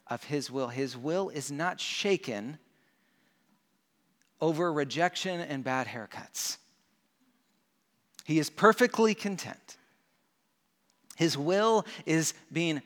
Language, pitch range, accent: English, 130-175 Hz, American